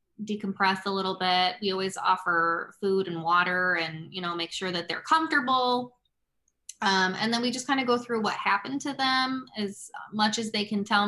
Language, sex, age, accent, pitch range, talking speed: English, female, 20-39, American, 185-215 Hz, 200 wpm